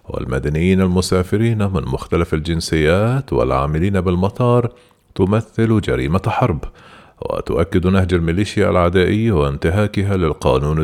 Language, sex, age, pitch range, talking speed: Arabic, male, 40-59, 80-105 Hz, 90 wpm